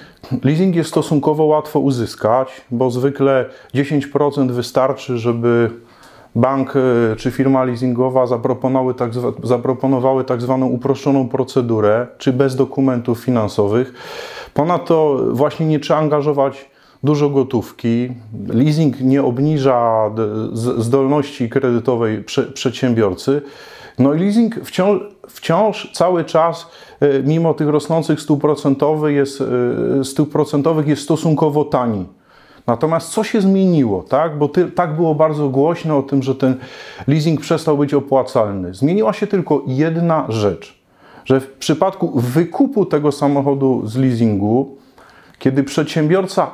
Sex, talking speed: male, 110 wpm